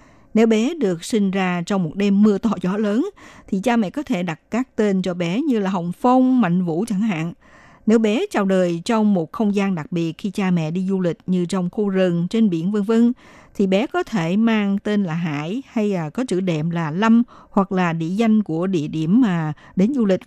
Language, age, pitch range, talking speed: Vietnamese, 60-79, 175-230 Hz, 235 wpm